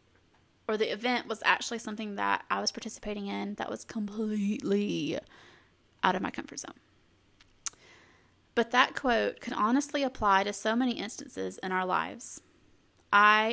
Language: English